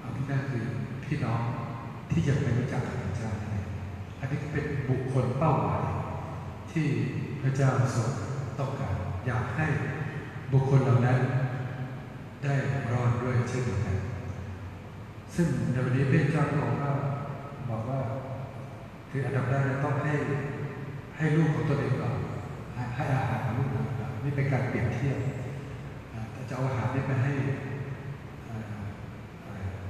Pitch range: 120-140 Hz